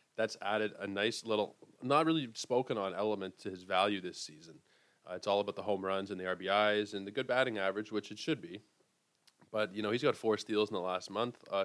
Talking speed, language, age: 235 wpm, English, 20-39